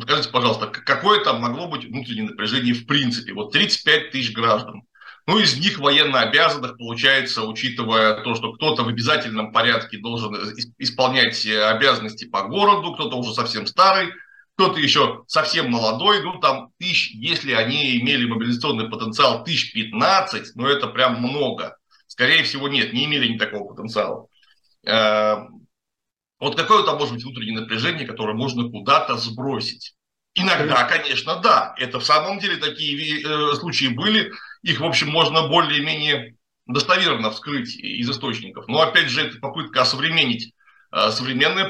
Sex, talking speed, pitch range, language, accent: male, 140 wpm, 115-165 Hz, Russian, native